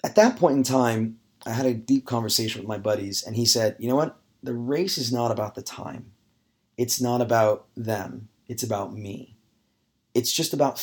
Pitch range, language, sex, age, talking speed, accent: 110-130 Hz, English, male, 30-49, 200 wpm, American